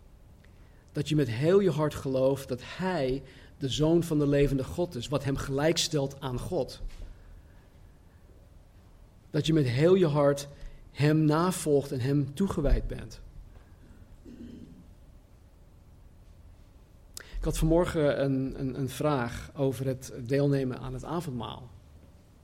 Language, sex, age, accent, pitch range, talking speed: Dutch, male, 40-59, Dutch, 105-150 Hz, 125 wpm